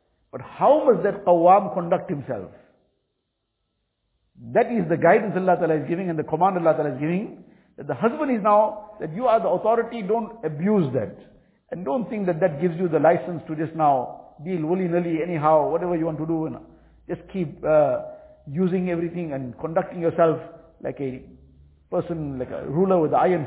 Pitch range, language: 150-190 Hz, English